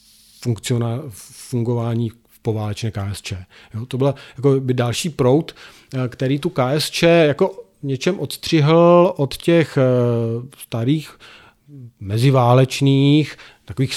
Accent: native